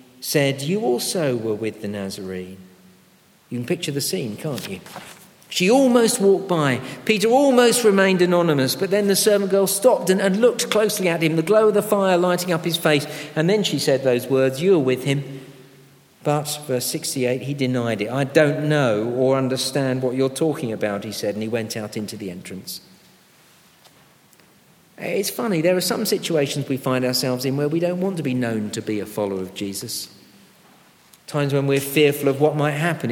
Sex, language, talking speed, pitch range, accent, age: male, English, 195 wpm, 125-185 Hz, British, 50-69